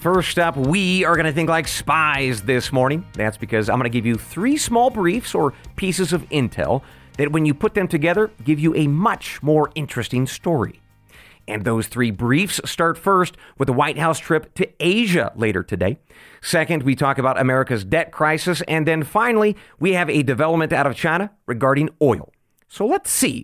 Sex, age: male, 40-59